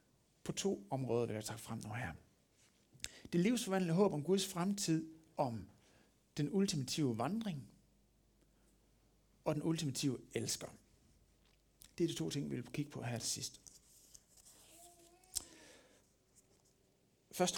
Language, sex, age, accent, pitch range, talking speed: Danish, male, 60-79, native, 125-175 Hz, 125 wpm